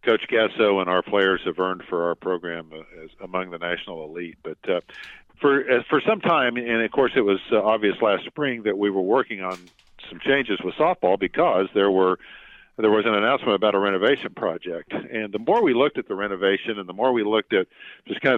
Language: English